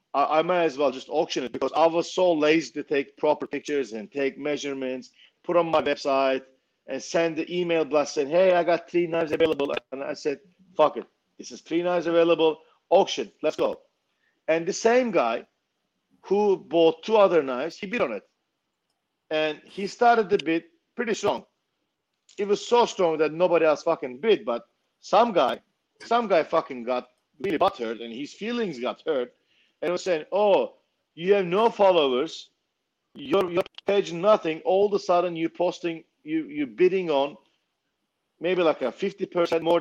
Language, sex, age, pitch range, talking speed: English, male, 50-69, 155-205 Hz, 175 wpm